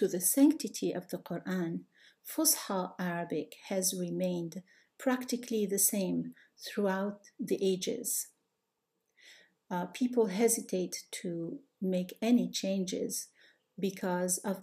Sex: female